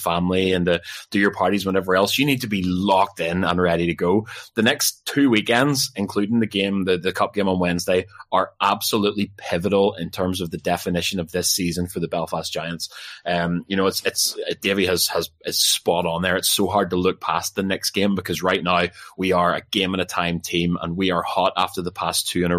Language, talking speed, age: English, 235 wpm, 20-39